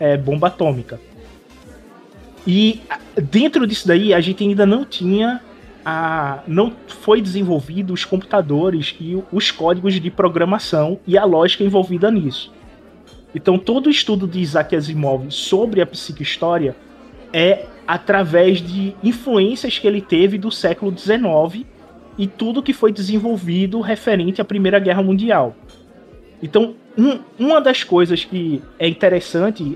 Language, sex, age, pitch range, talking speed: Portuguese, male, 20-39, 165-220 Hz, 135 wpm